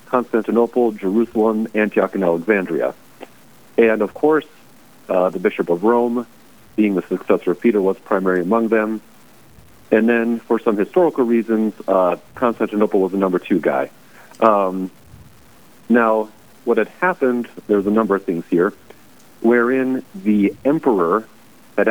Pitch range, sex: 100-115 Hz, male